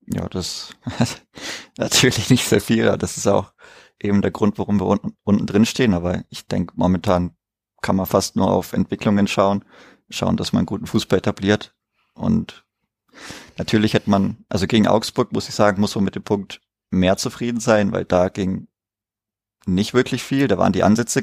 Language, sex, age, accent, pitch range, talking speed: German, male, 20-39, German, 95-110 Hz, 180 wpm